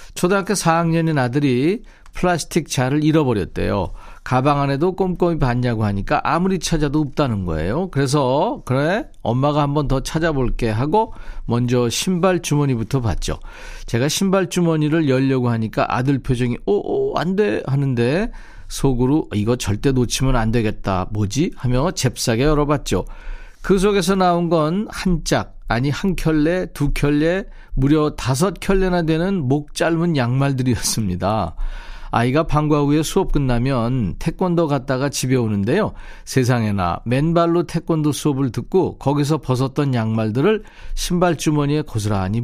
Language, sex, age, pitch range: Korean, male, 40-59, 125-170 Hz